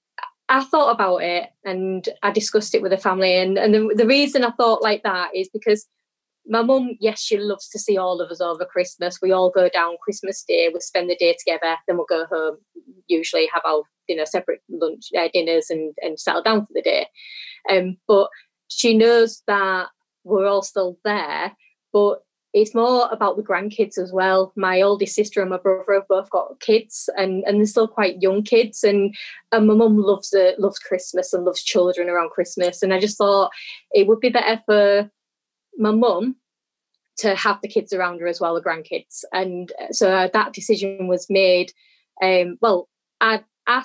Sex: female